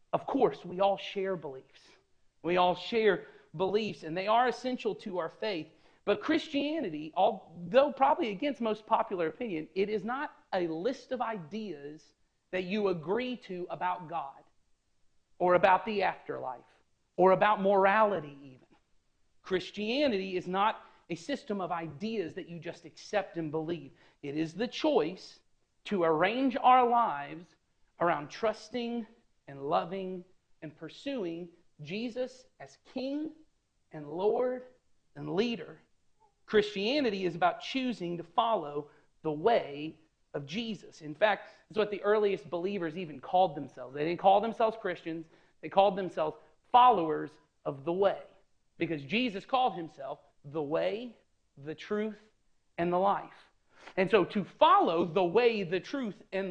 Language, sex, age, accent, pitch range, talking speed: English, male, 40-59, American, 165-225 Hz, 140 wpm